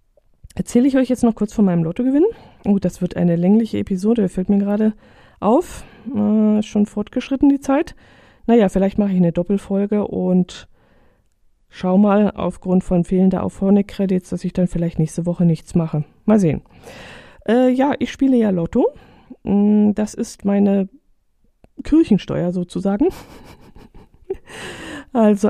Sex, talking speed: female, 140 wpm